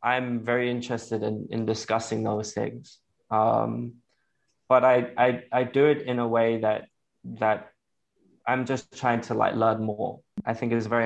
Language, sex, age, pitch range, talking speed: Vietnamese, male, 20-39, 110-120 Hz, 175 wpm